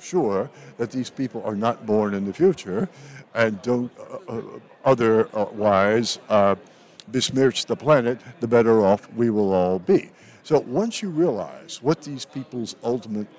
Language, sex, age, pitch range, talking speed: English, male, 60-79, 110-145 Hz, 150 wpm